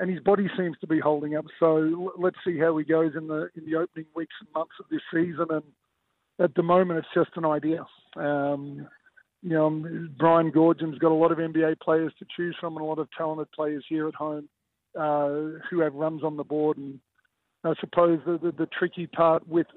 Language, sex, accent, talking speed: English, male, Australian, 220 wpm